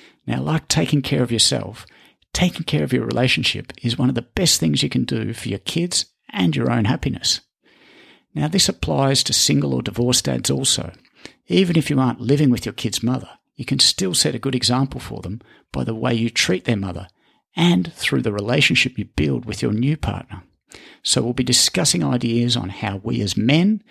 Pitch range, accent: 105-135 Hz, Australian